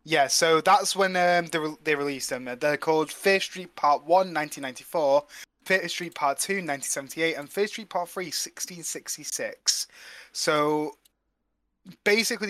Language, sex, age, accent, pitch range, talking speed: English, male, 20-39, British, 125-165 Hz, 155 wpm